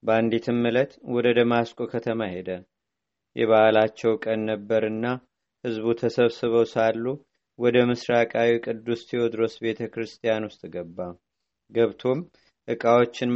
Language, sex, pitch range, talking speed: Amharic, male, 115-125 Hz, 95 wpm